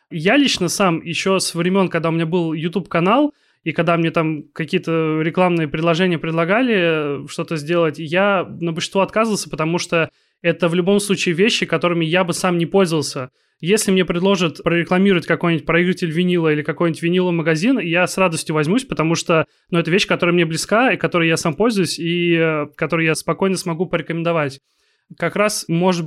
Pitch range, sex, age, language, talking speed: 160-185 Hz, male, 20-39, Russian, 170 wpm